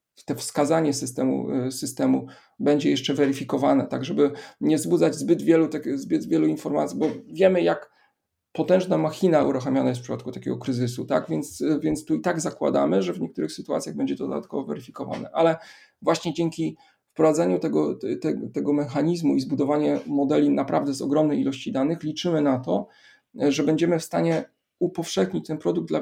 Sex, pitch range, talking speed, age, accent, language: male, 125-180 Hz, 165 wpm, 40-59, native, Polish